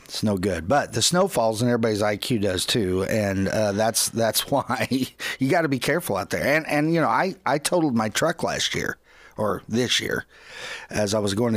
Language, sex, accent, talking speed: English, male, American, 220 wpm